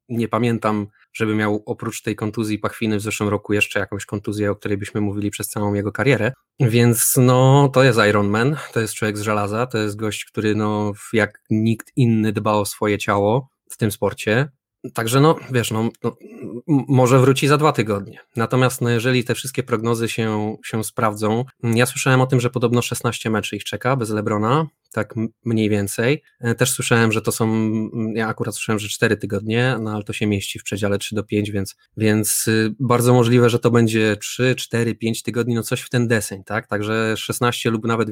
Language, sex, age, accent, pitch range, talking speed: Polish, male, 20-39, native, 105-120 Hz, 195 wpm